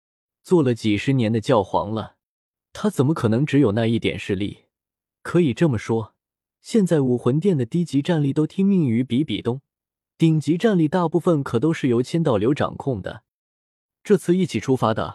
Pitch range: 115-165 Hz